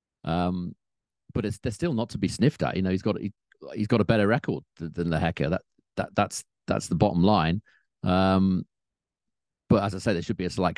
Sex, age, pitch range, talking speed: male, 40-59, 85-110 Hz, 230 wpm